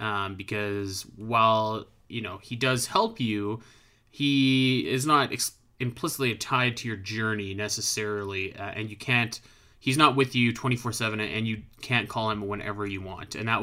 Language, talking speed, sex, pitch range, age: English, 170 wpm, male, 105-130 Hz, 20-39